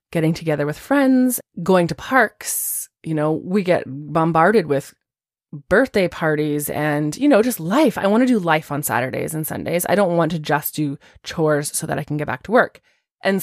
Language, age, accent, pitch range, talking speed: English, 20-39, American, 150-190 Hz, 200 wpm